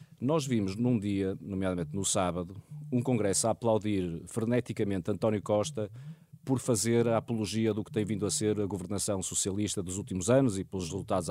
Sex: male